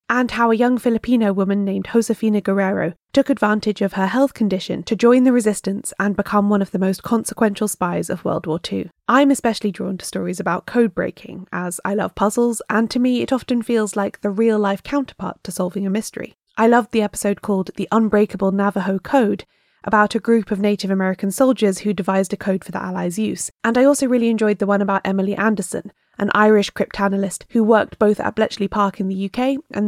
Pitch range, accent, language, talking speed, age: 195-230 Hz, British, English, 210 wpm, 10-29